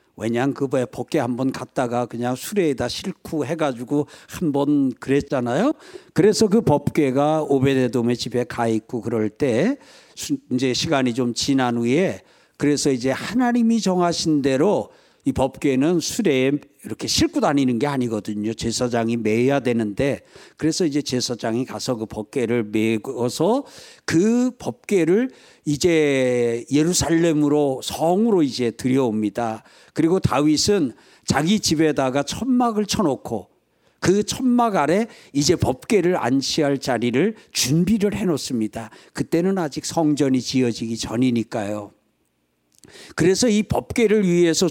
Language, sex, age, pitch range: Korean, male, 50-69, 125-195 Hz